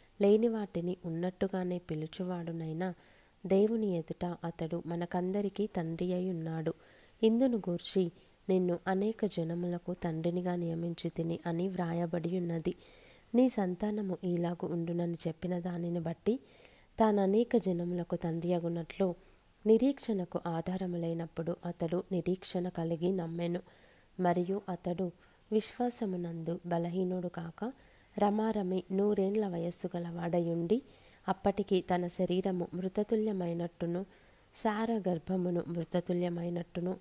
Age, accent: 30-49, native